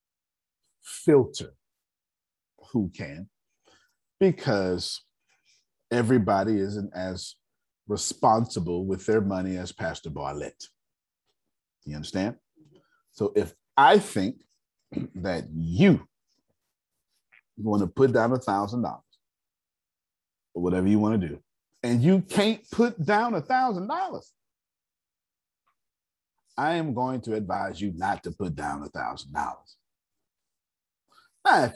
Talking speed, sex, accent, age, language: 110 wpm, male, American, 40-59, English